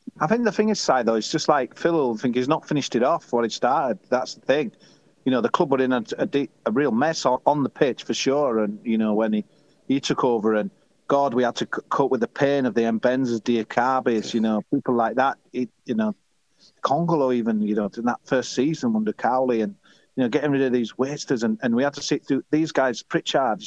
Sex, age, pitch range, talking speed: male, 40-59, 120-155 Hz, 245 wpm